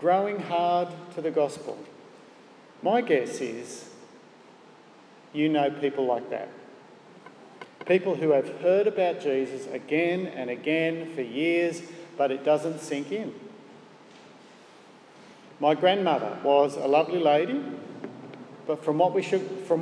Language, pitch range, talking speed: English, 150-190 Hz, 125 wpm